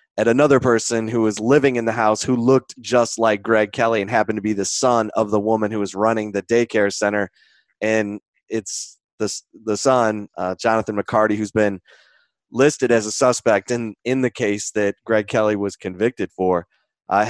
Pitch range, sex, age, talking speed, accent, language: 105-125 Hz, male, 20-39, 190 wpm, American, English